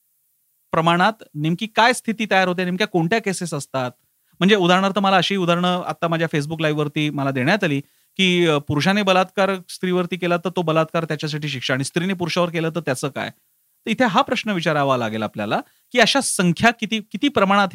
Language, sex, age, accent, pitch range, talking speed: Marathi, male, 40-59, native, 140-195 Hz, 100 wpm